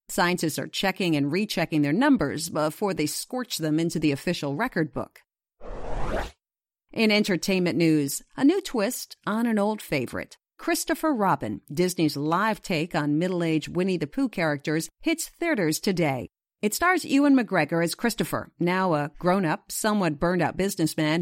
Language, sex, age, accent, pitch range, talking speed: English, female, 50-69, American, 155-220 Hz, 145 wpm